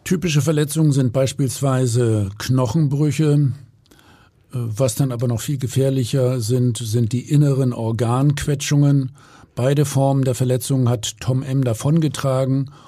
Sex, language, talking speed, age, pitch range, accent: male, German, 110 wpm, 50-69, 120-145 Hz, German